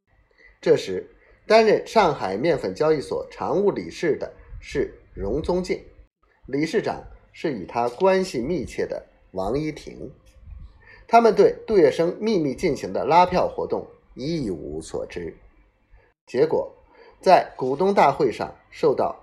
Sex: male